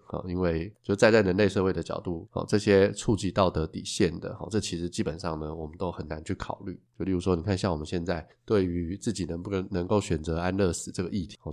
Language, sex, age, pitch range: Chinese, male, 20-39, 85-105 Hz